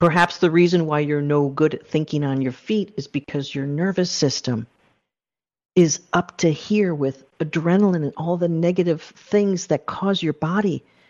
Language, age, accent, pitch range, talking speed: English, 50-69, American, 155-200 Hz, 175 wpm